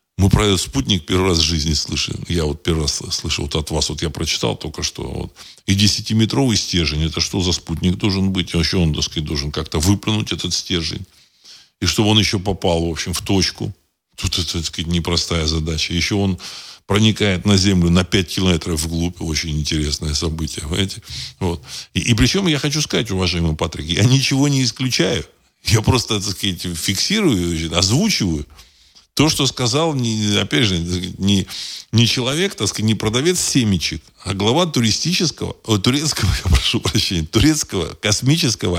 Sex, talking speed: male, 165 wpm